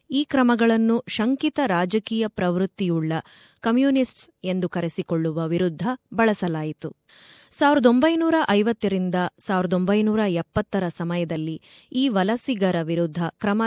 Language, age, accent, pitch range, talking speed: Kannada, 20-39, native, 175-245 Hz, 85 wpm